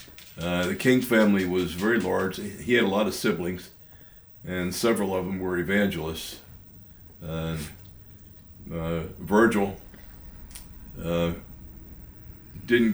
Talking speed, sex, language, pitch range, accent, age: 110 wpm, male, English, 80-100 Hz, American, 60-79